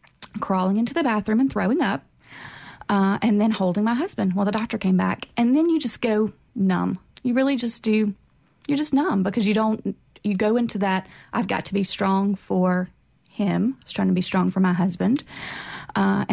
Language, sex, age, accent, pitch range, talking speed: English, female, 30-49, American, 195-235 Hz, 200 wpm